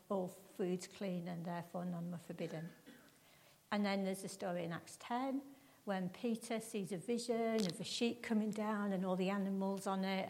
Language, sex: English, female